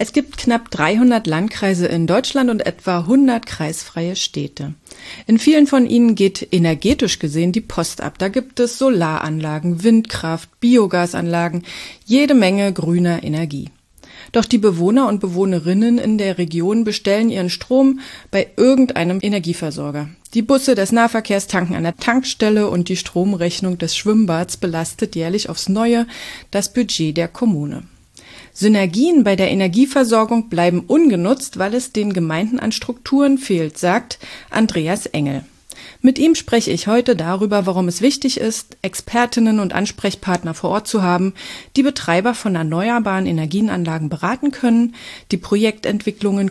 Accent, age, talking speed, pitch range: German, 30-49, 140 wpm, 175-240 Hz